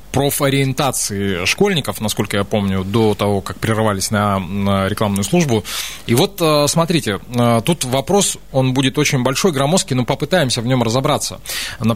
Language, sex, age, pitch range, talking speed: Russian, male, 20-39, 110-145 Hz, 140 wpm